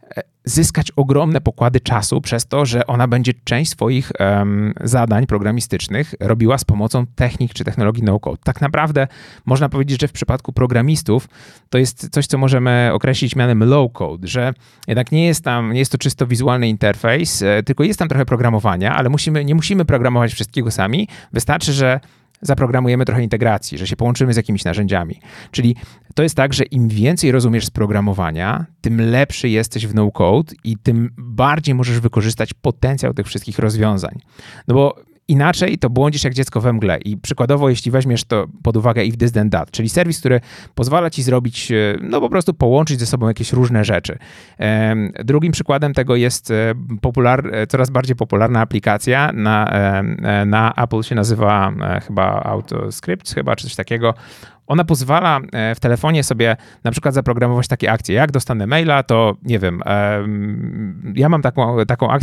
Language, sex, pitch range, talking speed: Polish, male, 110-135 Hz, 165 wpm